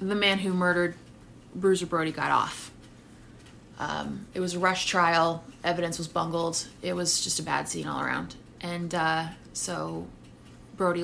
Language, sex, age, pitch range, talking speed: English, female, 20-39, 150-180 Hz, 160 wpm